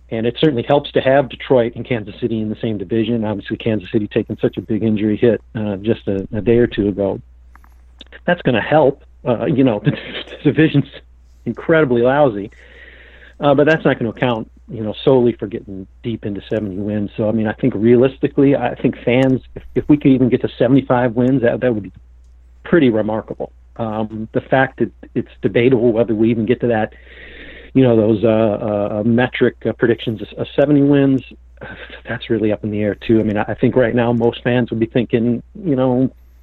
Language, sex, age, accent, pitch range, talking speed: English, male, 50-69, American, 110-130 Hz, 205 wpm